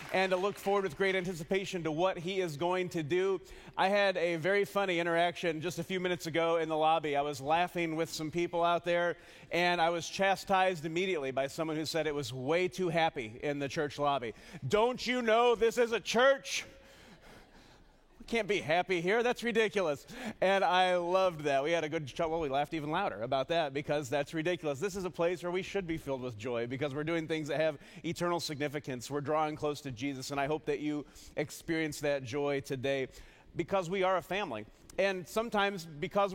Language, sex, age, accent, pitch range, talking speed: English, male, 40-59, American, 150-185 Hz, 210 wpm